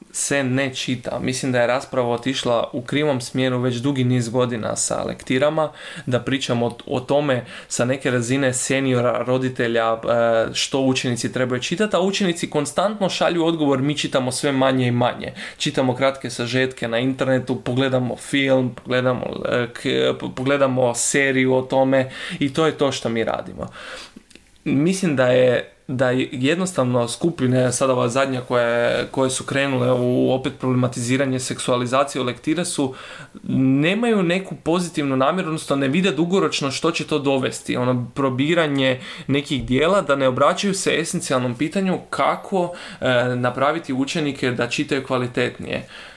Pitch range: 130-155 Hz